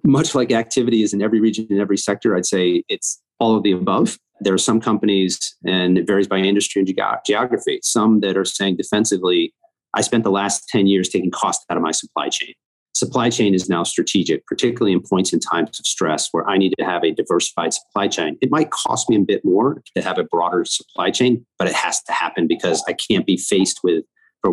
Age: 40-59